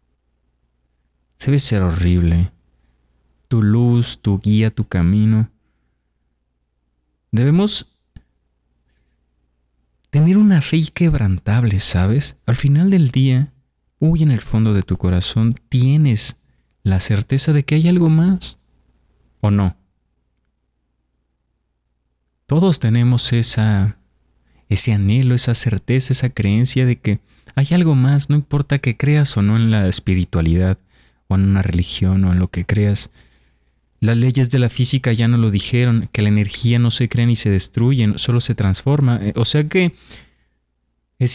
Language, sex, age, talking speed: Spanish, male, 30-49, 135 wpm